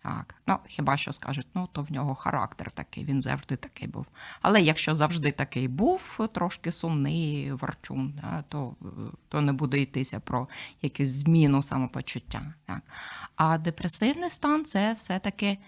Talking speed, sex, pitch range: 150 wpm, female, 155-195 Hz